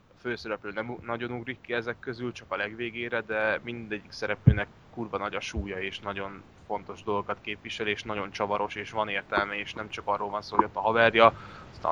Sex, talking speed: male, 205 wpm